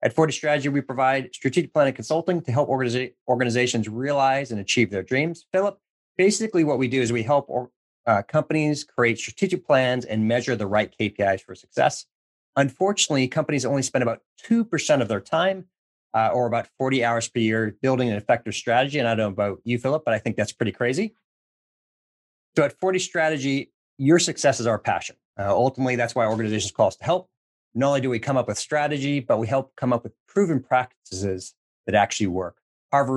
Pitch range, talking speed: 110-145 Hz, 195 wpm